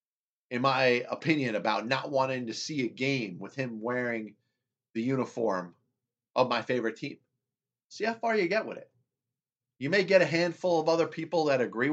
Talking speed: 180 wpm